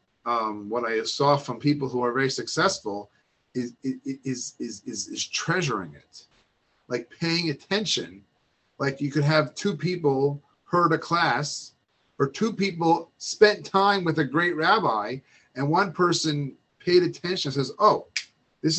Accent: American